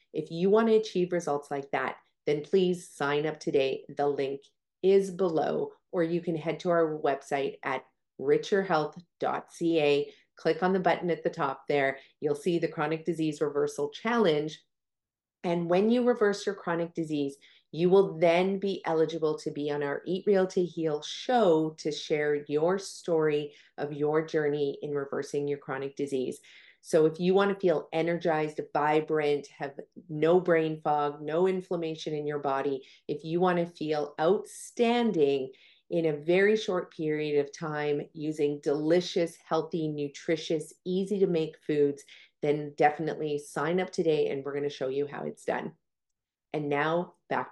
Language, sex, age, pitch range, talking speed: English, female, 40-59, 145-180 Hz, 165 wpm